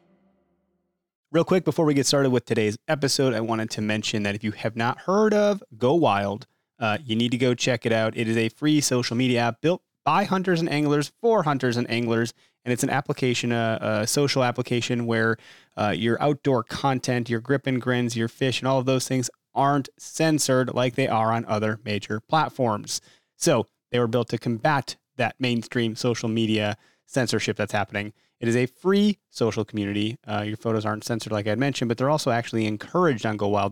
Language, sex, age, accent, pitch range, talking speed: English, male, 30-49, American, 110-140 Hz, 205 wpm